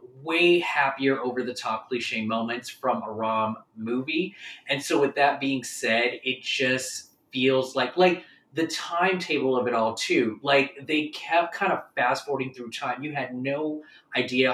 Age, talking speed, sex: 20-39, 170 wpm, male